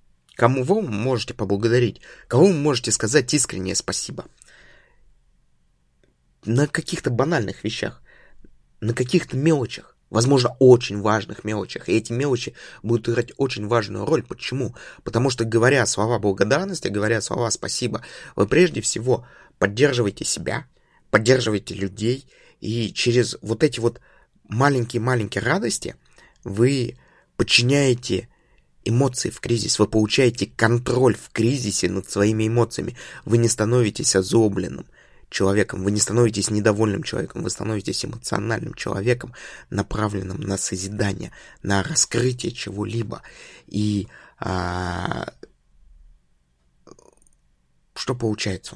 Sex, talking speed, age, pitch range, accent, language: male, 110 wpm, 20-39, 100-125 Hz, native, Russian